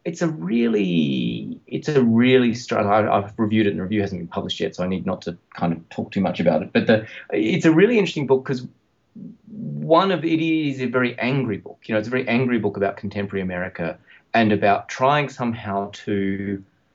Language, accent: English, Australian